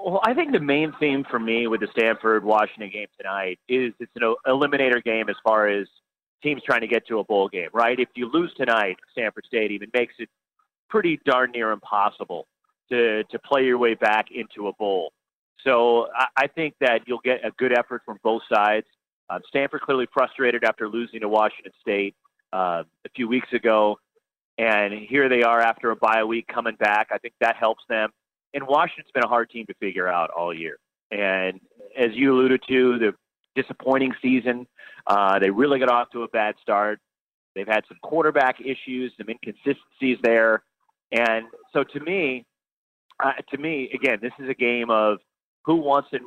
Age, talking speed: 40-59, 185 wpm